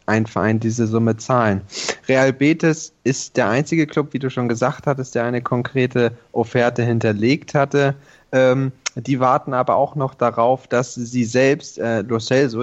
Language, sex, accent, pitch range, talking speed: German, male, German, 115-135 Hz, 160 wpm